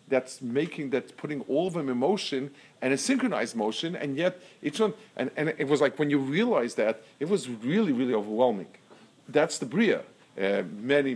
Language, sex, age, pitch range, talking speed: English, male, 50-69, 125-170 Hz, 195 wpm